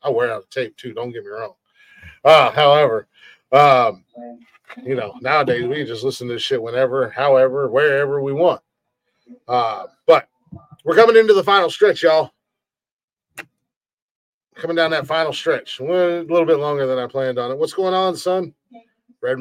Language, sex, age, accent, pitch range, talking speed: English, male, 30-49, American, 130-200 Hz, 175 wpm